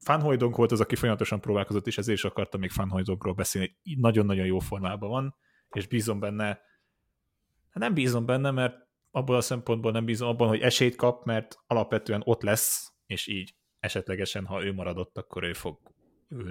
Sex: male